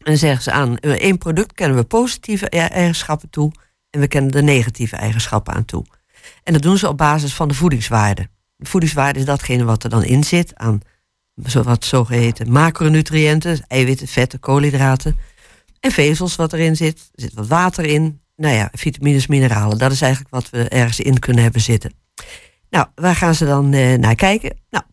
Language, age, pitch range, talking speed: Dutch, 50-69, 125-160 Hz, 185 wpm